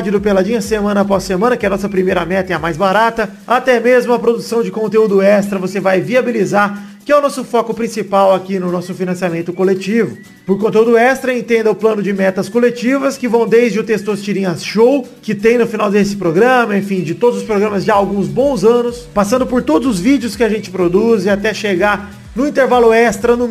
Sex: male